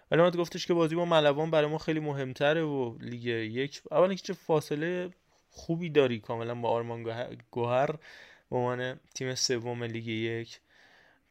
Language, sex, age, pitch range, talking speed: Persian, male, 20-39, 125-160 Hz, 155 wpm